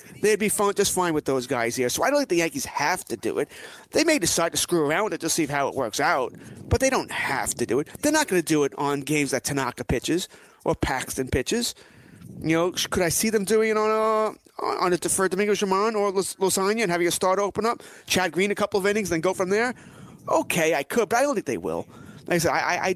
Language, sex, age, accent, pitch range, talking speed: English, male, 30-49, American, 140-185 Hz, 270 wpm